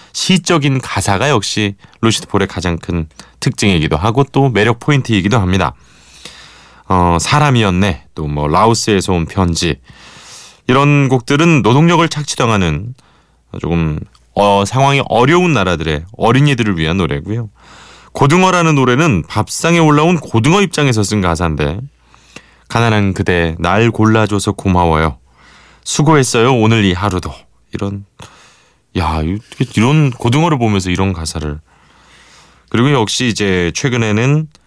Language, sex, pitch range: Korean, male, 85-140 Hz